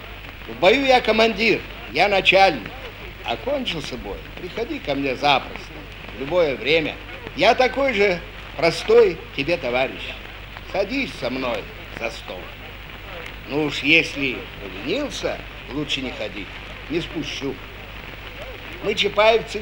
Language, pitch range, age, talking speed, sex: Russian, 130-210 Hz, 50-69, 115 wpm, male